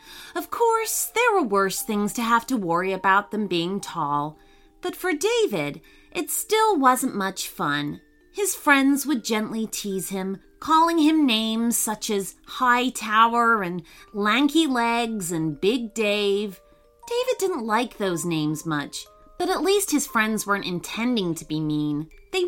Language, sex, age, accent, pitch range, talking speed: English, female, 30-49, American, 170-290 Hz, 155 wpm